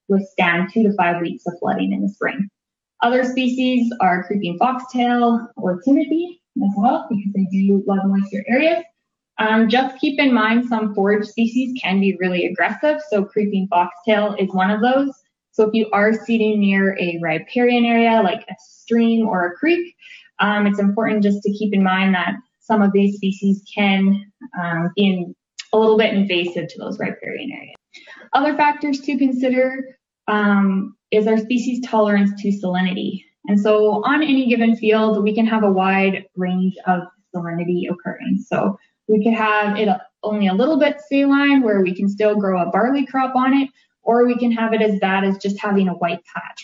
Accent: American